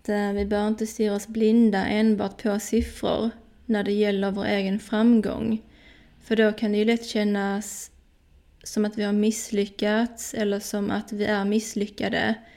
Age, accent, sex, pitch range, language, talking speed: 20-39, native, female, 200-215 Hz, Swedish, 160 wpm